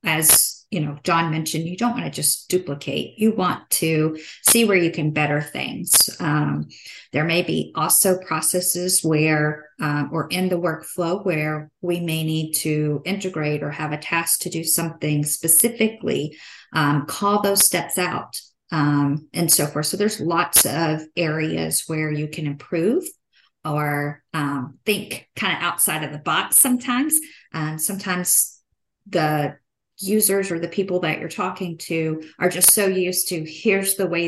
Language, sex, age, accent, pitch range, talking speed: English, female, 40-59, American, 155-185 Hz, 165 wpm